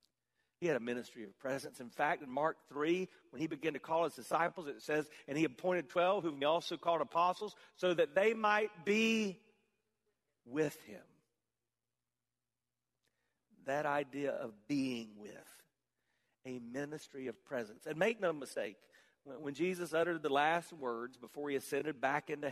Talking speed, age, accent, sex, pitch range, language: 160 wpm, 50-69, American, male, 135-210 Hz, English